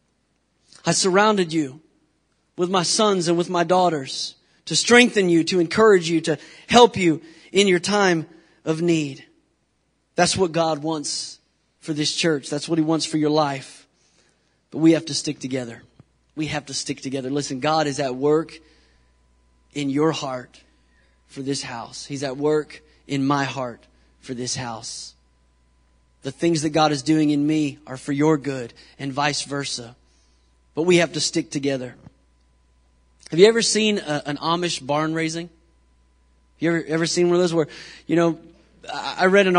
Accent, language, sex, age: American, English, male, 30-49